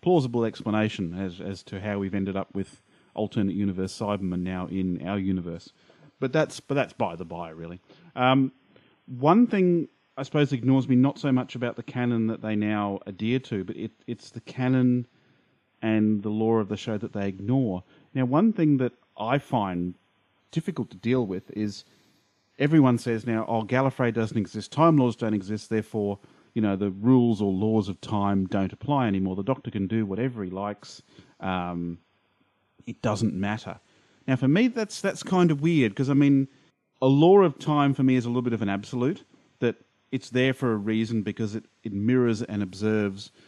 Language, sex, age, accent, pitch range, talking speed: English, male, 30-49, Australian, 100-130 Hz, 190 wpm